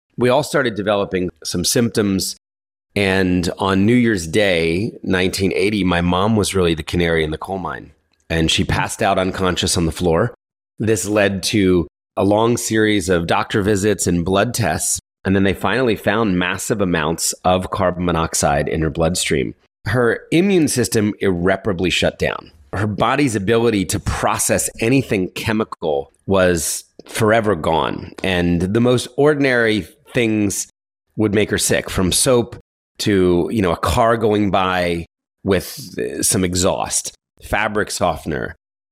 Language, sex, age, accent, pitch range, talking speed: English, male, 30-49, American, 90-110 Hz, 145 wpm